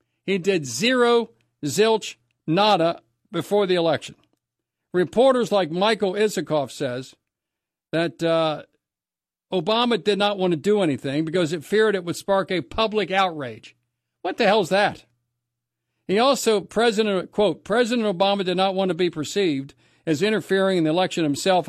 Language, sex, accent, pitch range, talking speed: English, male, American, 160-215 Hz, 145 wpm